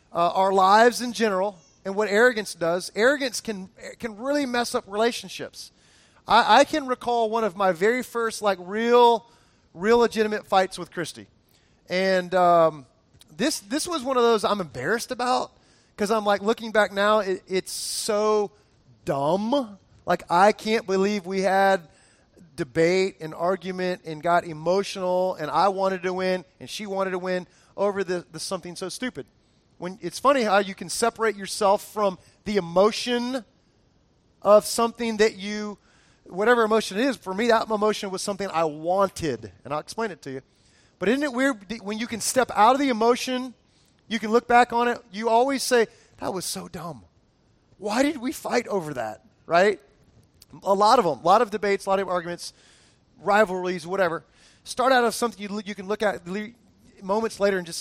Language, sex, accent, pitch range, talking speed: English, male, American, 180-230 Hz, 180 wpm